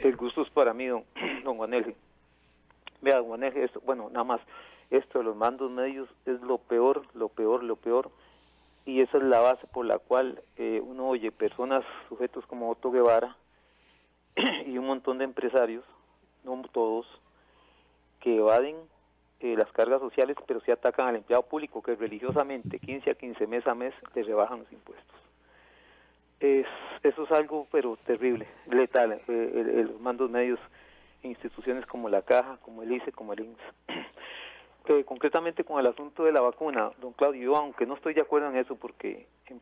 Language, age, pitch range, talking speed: Spanish, 40-59, 115-140 Hz, 175 wpm